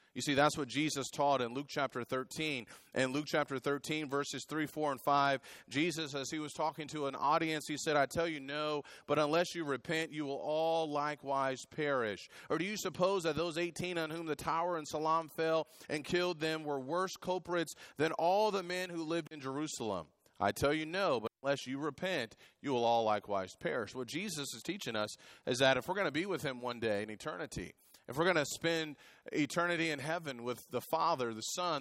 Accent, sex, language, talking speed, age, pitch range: American, male, English, 215 wpm, 30-49, 125-160 Hz